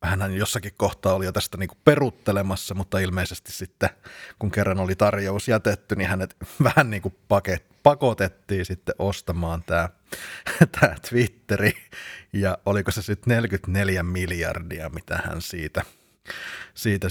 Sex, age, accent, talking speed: male, 30-49, native, 125 wpm